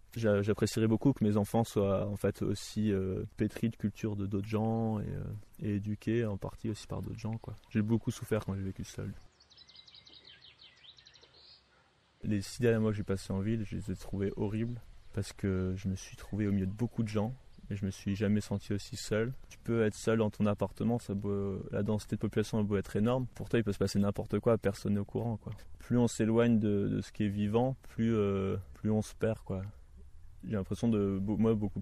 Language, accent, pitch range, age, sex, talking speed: French, French, 100-115 Hz, 20-39, male, 225 wpm